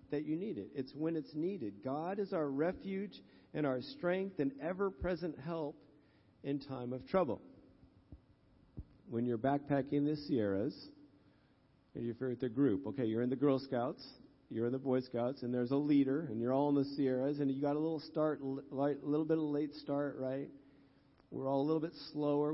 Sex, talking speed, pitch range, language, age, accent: male, 195 wpm, 135-155 Hz, English, 50-69, American